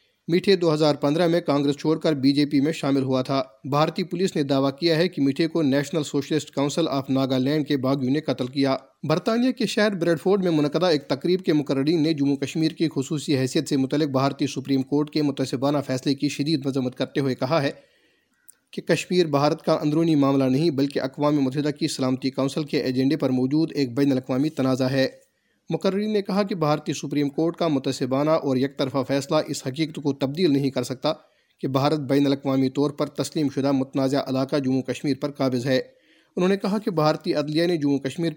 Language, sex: Urdu, male